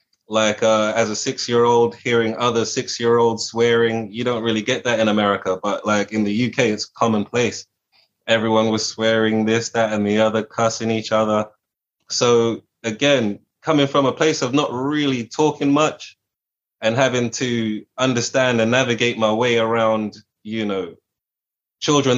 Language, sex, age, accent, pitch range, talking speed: English, male, 20-39, British, 110-125 Hz, 155 wpm